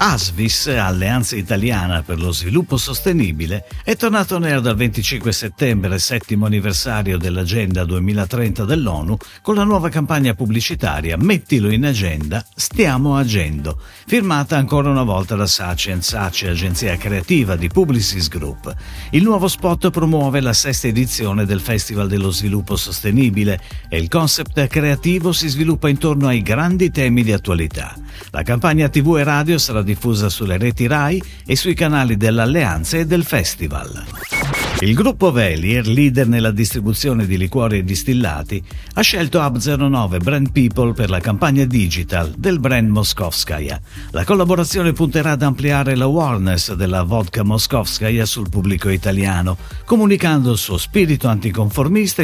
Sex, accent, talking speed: male, native, 140 wpm